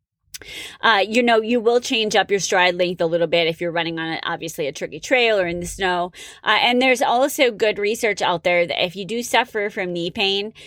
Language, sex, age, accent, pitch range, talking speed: English, female, 20-39, American, 175-225 Hz, 230 wpm